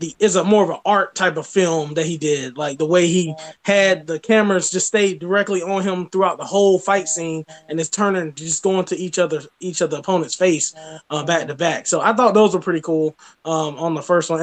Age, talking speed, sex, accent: 20-39, 240 wpm, male, American